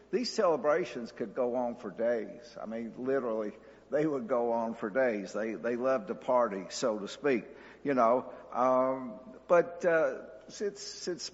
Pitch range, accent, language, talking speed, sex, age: 125-195 Hz, American, English, 165 wpm, male, 60-79